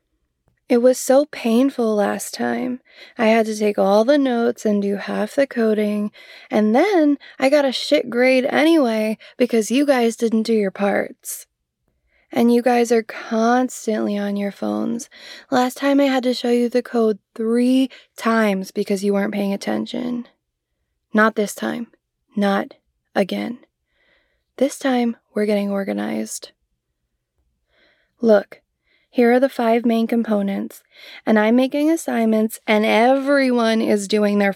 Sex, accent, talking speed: female, American, 145 wpm